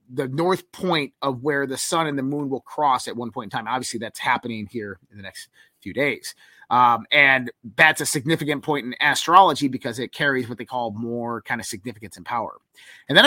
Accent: American